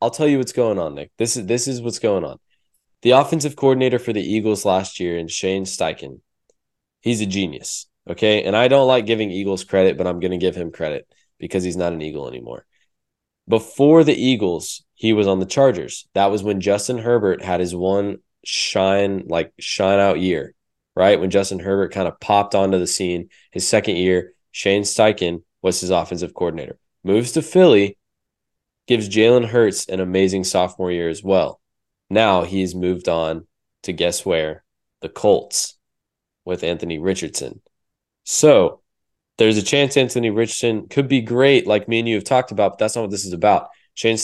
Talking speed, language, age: 185 wpm, English, 20-39